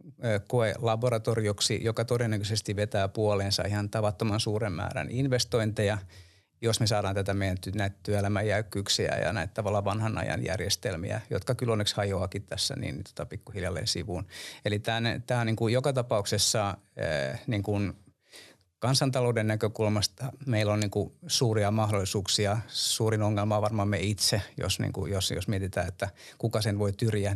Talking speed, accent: 145 wpm, native